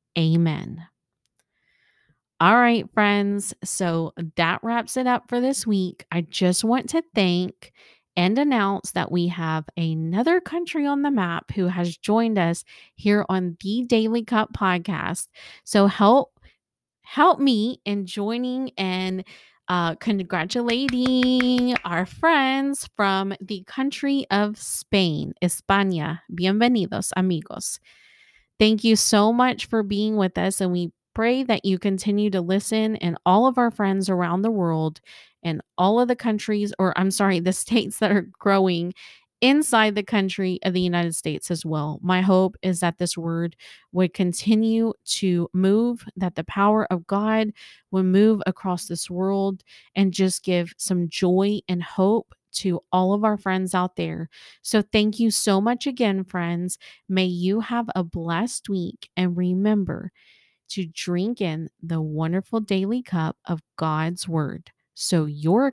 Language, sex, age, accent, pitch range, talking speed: English, female, 30-49, American, 180-220 Hz, 150 wpm